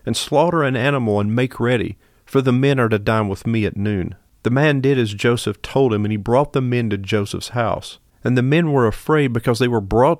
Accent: American